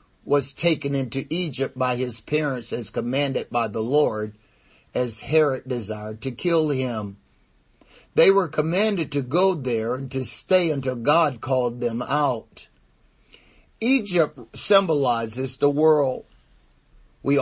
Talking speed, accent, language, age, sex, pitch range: 125 wpm, American, English, 50-69, male, 120-155 Hz